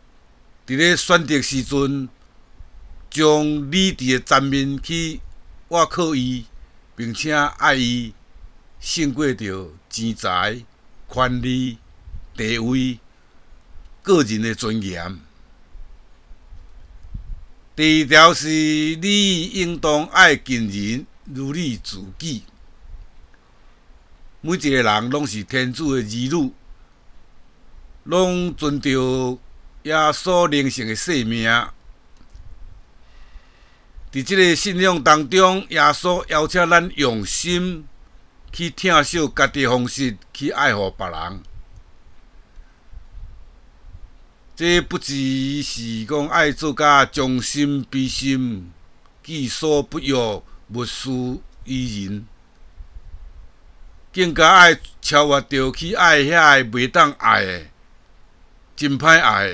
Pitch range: 90-150 Hz